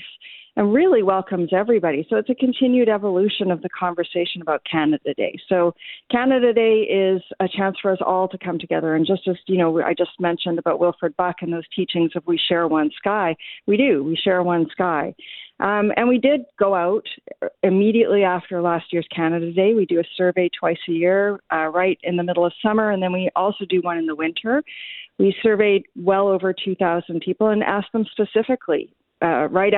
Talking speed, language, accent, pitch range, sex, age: 200 wpm, English, American, 170-200 Hz, female, 40-59